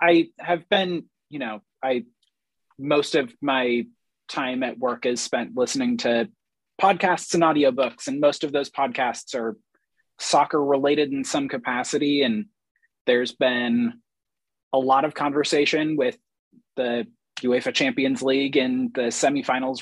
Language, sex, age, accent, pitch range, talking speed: English, male, 30-49, American, 135-180 Hz, 135 wpm